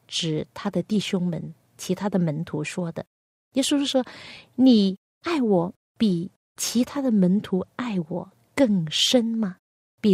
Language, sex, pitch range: Chinese, female, 175-225 Hz